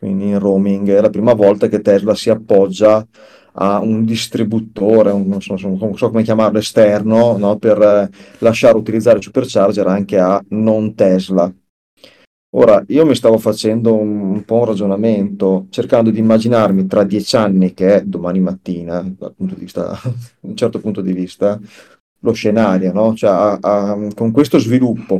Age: 30-49